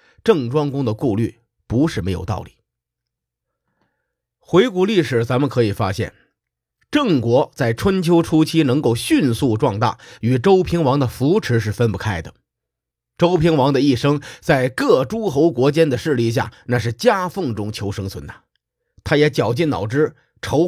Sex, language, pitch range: male, Chinese, 110-155 Hz